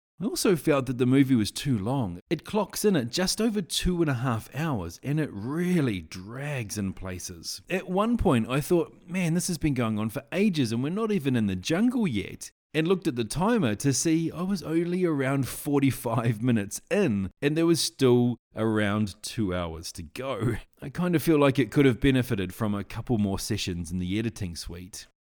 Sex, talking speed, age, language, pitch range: male, 210 wpm, 30-49, English, 105-170 Hz